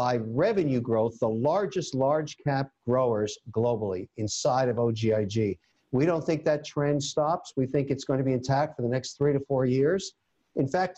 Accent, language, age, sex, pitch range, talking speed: American, English, 50-69, male, 125-165 Hz, 185 wpm